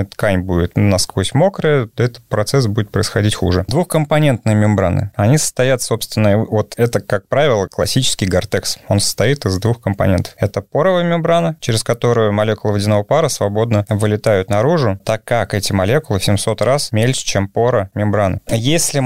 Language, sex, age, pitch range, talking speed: Russian, male, 20-39, 105-135 Hz, 150 wpm